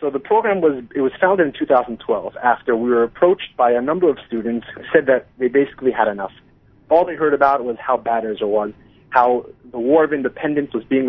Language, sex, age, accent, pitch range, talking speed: English, male, 30-49, American, 120-145 Hz, 220 wpm